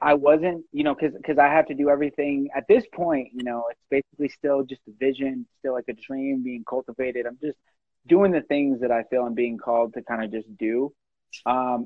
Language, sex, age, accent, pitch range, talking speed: English, male, 20-39, American, 120-145 Hz, 225 wpm